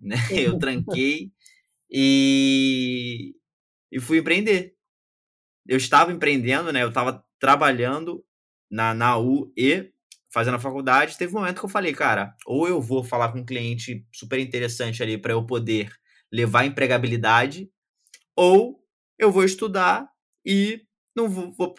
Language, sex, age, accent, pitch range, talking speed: Portuguese, male, 20-39, Brazilian, 120-160 Hz, 140 wpm